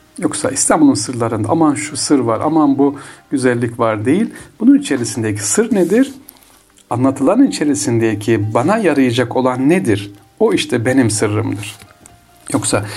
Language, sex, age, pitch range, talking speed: Turkish, male, 60-79, 105-130 Hz, 125 wpm